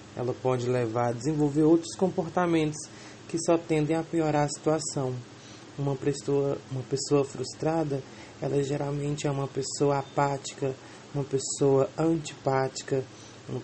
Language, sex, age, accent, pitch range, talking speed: English, male, 20-39, Brazilian, 135-160 Hz, 125 wpm